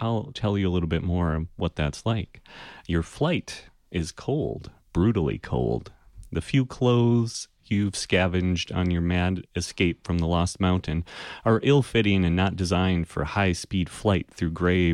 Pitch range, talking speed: 85-110 Hz, 160 wpm